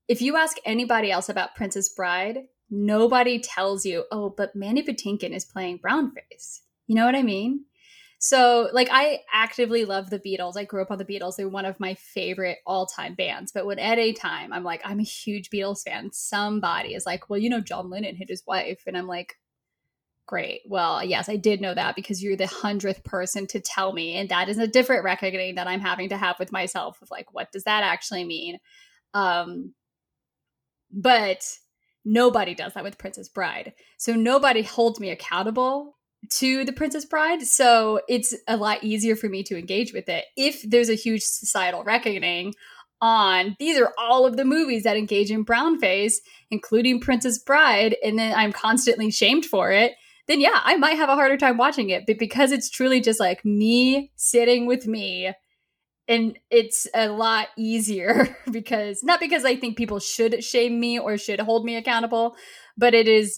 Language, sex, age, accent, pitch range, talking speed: English, female, 10-29, American, 195-240 Hz, 190 wpm